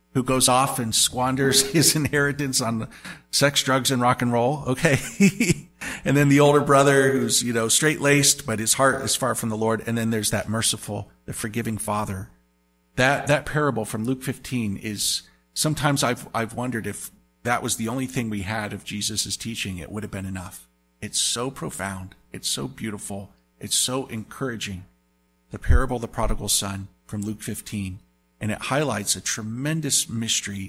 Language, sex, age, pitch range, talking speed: English, male, 50-69, 100-130 Hz, 180 wpm